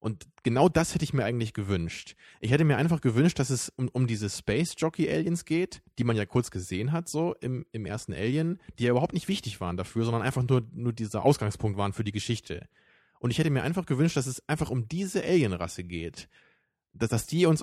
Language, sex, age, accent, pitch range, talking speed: German, male, 20-39, German, 110-150 Hz, 225 wpm